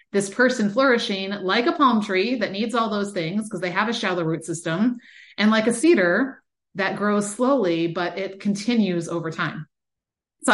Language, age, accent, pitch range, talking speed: English, 30-49, American, 185-255 Hz, 180 wpm